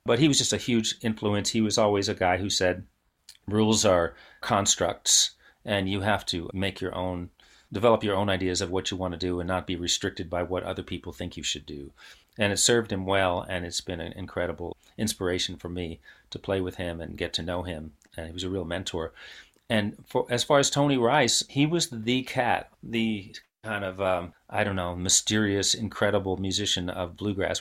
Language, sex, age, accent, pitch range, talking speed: English, male, 40-59, American, 95-110 Hz, 205 wpm